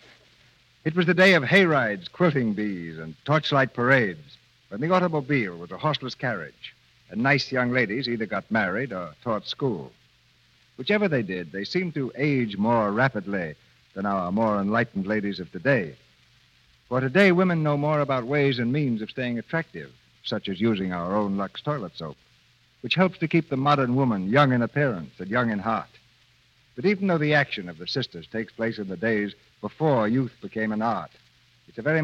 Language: English